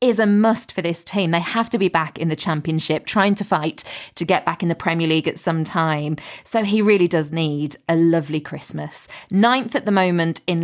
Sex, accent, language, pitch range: female, British, English, 165-200 Hz